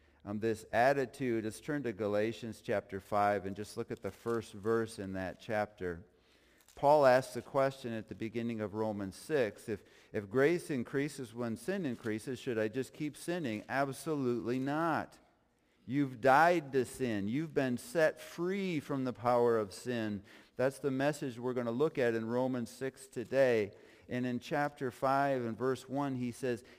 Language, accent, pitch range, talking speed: English, American, 115-160 Hz, 170 wpm